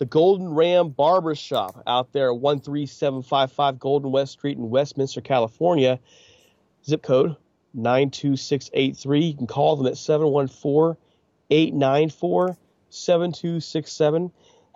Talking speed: 75 wpm